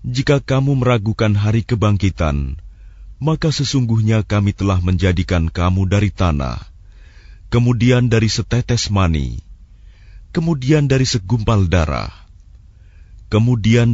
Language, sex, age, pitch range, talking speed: Indonesian, male, 30-49, 90-115 Hz, 95 wpm